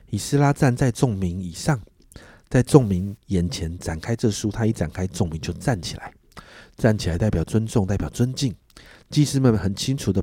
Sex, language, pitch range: male, Chinese, 90-125 Hz